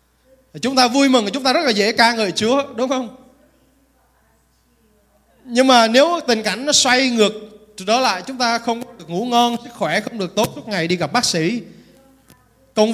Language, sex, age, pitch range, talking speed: Vietnamese, male, 20-39, 195-255 Hz, 200 wpm